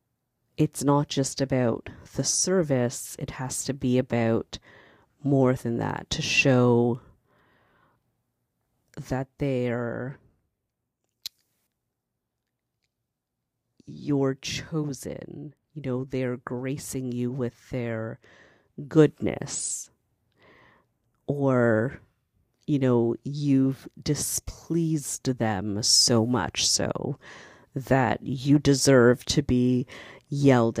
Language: English